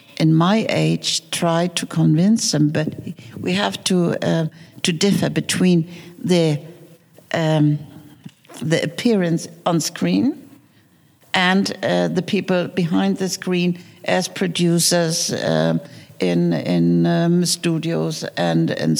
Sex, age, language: female, 60-79, German